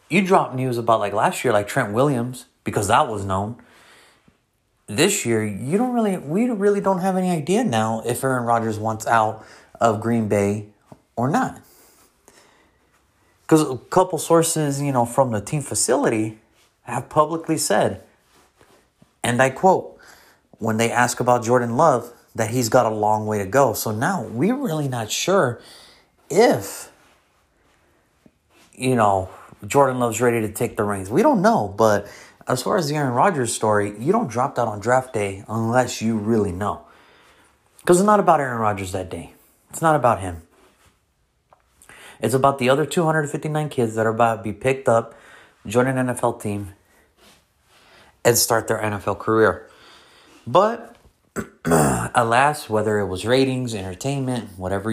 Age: 30-49